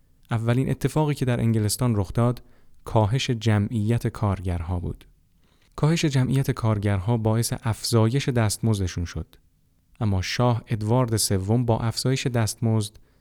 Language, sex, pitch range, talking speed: Persian, male, 100-125 Hz, 115 wpm